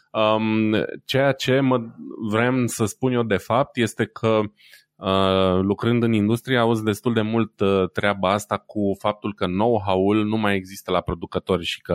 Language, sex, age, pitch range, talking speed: Romanian, male, 20-39, 95-115 Hz, 150 wpm